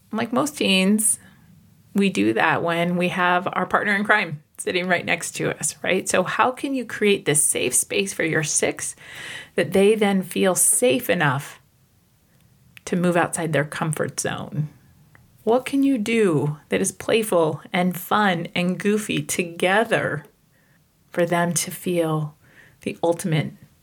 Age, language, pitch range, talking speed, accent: 30-49, English, 155-220 Hz, 150 wpm, American